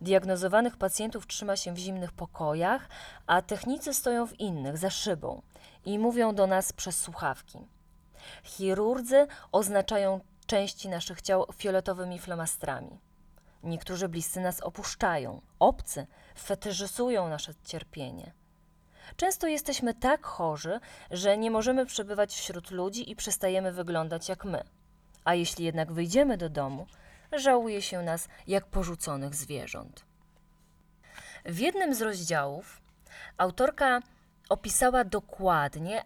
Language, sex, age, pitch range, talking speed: Polish, female, 20-39, 175-230 Hz, 115 wpm